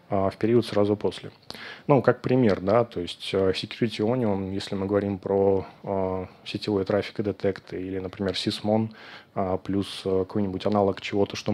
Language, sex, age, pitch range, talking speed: Russian, male, 20-39, 100-115 Hz, 155 wpm